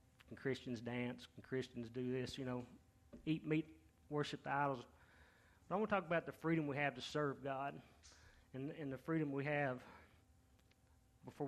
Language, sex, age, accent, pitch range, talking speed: English, male, 30-49, American, 95-150 Hz, 180 wpm